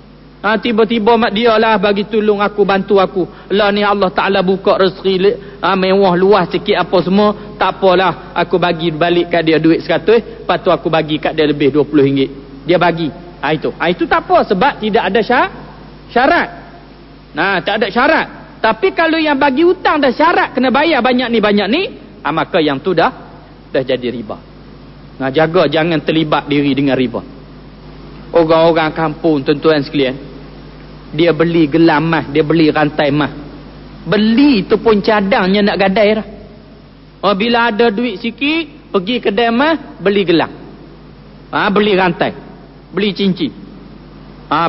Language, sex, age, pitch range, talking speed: Malay, male, 40-59, 170-240 Hz, 165 wpm